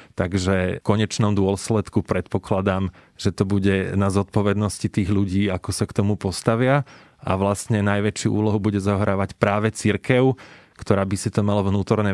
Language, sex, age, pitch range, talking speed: Slovak, male, 30-49, 95-115 Hz, 155 wpm